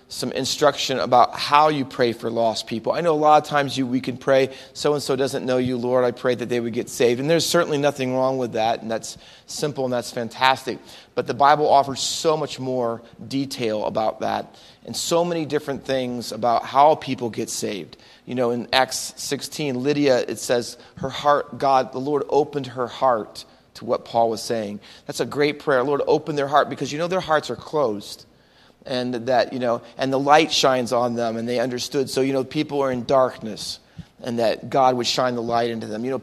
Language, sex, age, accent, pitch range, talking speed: English, male, 30-49, American, 120-140 Hz, 215 wpm